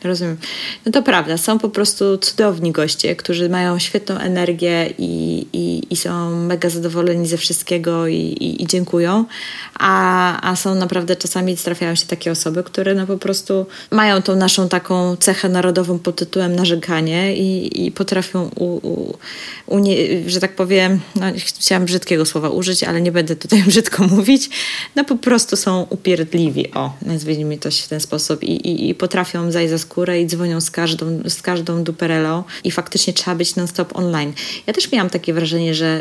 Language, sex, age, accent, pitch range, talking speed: Polish, female, 20-39, native, 170-190 Hz, 165 wpm